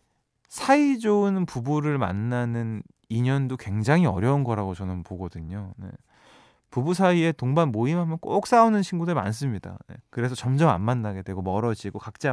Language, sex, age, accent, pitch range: Korean, male, 20-39, native, 115-175 Hz